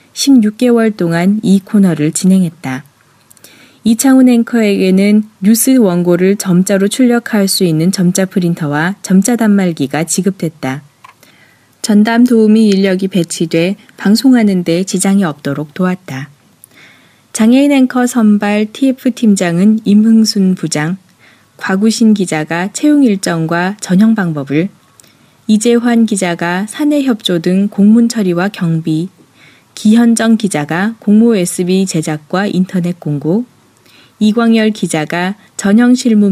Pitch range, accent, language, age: 170-225 Hz, native, Korean, 20-39